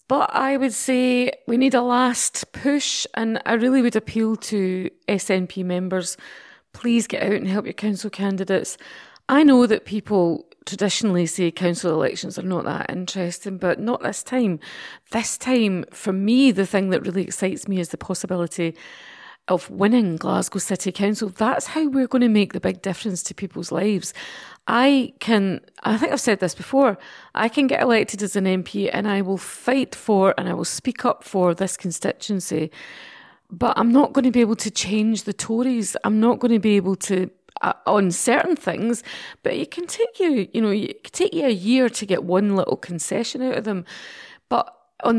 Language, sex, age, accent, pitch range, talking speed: English, female, 40-59, British, 185-245 Hz, 190 wpm